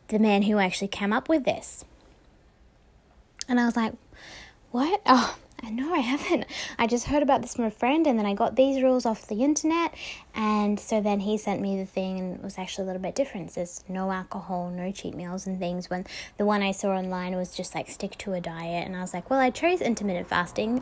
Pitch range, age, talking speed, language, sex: 200-275 Hz, 10-29, 230 wpm, English, female